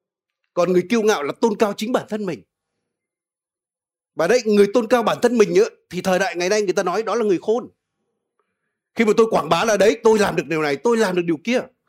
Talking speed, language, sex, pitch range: 245 wpm, Vietnamese, male, 160-235 Hz